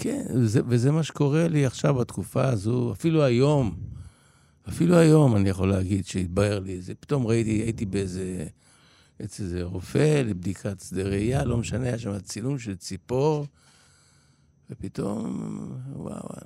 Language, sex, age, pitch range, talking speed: Hebrew, male, 60-79, 100-130 Hz, 135 wpm